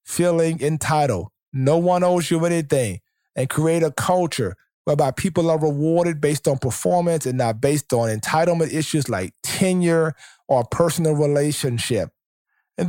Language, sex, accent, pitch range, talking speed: English, male, American, 135-180 Hz, 140 wpm